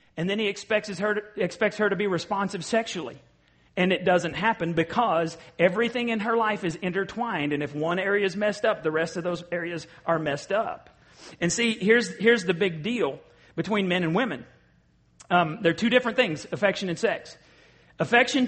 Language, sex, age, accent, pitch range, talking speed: English, male, 40-59, American, 165-210 Hz, 195 wpm